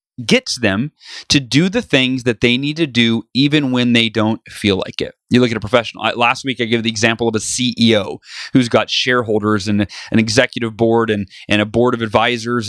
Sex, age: male, 30-49